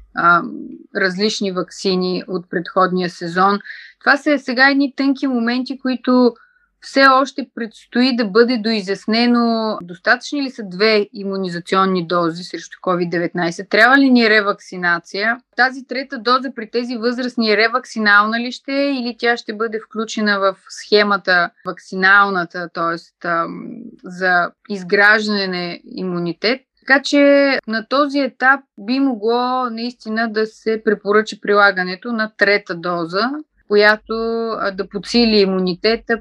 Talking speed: 125 wpm